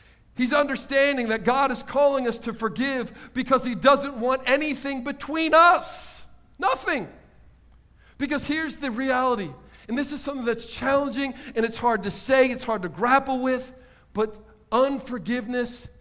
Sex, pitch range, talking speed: male, 205-270 Hz, 145 wpm